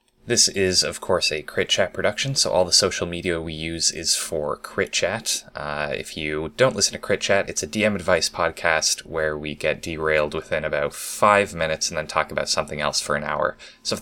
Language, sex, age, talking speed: English, male, 20-39, 215 wpm